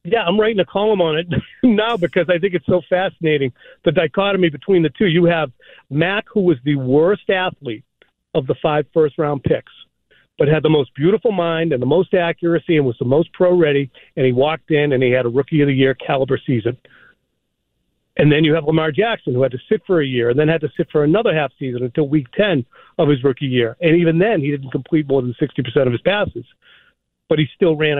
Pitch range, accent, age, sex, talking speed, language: 135-175 Hz, American, 40-59, male, 225 wpm, English